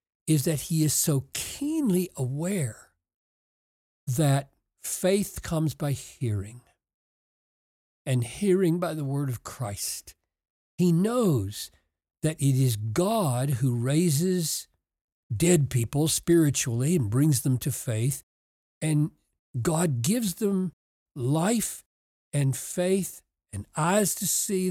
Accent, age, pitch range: American, 60-79, 125-180 Hz